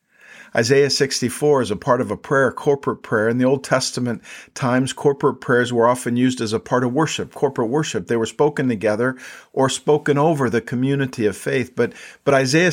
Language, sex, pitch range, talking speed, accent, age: English, male, 115-145 Hz, 200 wpm, American, 50-69